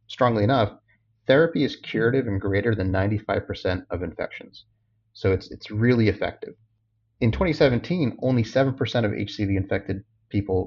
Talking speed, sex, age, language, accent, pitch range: 130 wpm, male, 30-49, English, American, 100-115 Hz